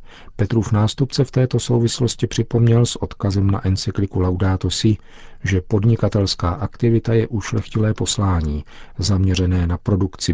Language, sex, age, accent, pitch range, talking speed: Czech, male, 50-69, native, 95-110 Hz, 120 wpm